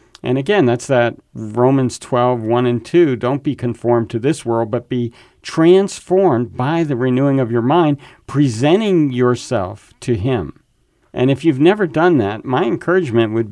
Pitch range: 120-160 Hz